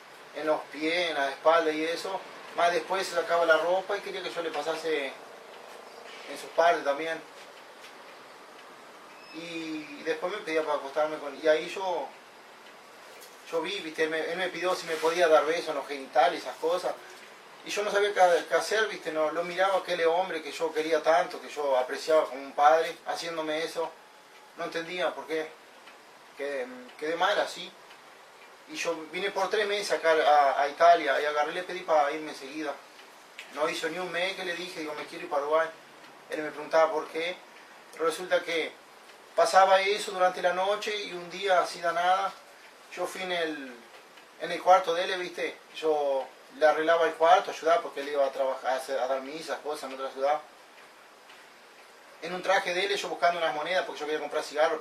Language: Italian